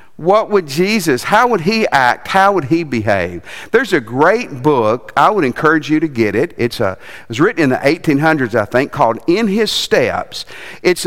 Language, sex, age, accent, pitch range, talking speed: English, male, 50-69, American, 125-205 Hz, 200 wpm